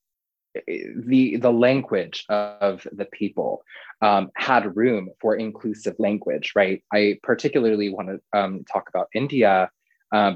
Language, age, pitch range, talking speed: English, 20-39, 95-115 Hz, 125 wpm